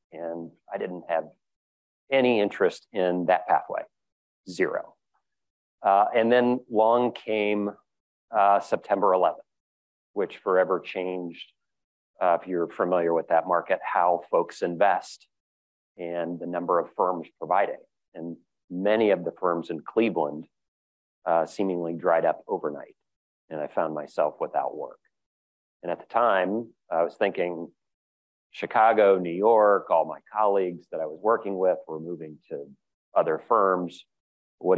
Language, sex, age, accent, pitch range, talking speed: English, male, 40-59, American, 80-105 Hz, 135 wpm